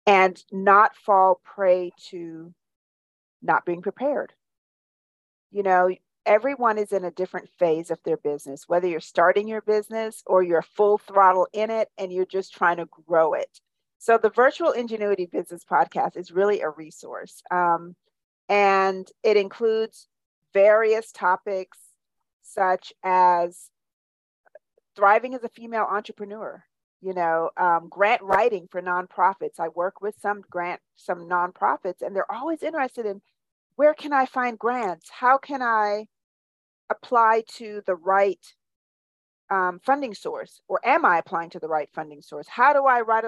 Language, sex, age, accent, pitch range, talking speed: English, female, 40-59, American, 175-220 Hz, 150 wpm